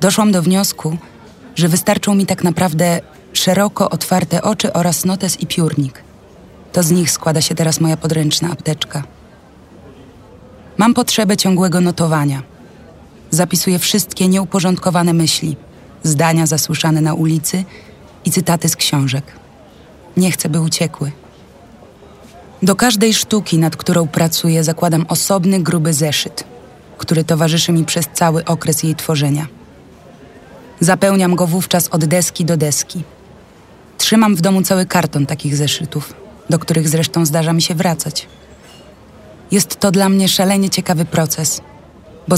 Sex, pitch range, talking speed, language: female, 160-185 Hz, 130 wpm, Polish